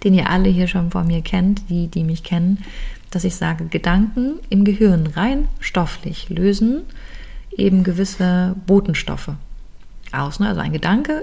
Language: German